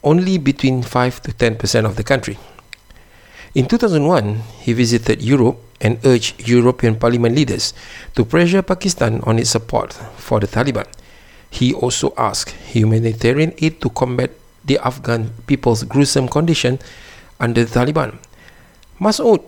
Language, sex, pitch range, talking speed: Malay, male, 110-135 Hz, 130 wpm